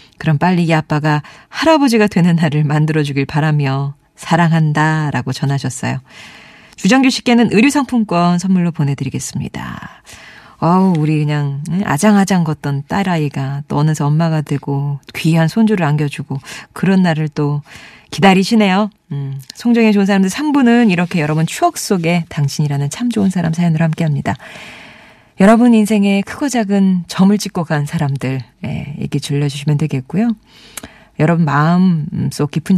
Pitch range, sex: 145-205 Hz, female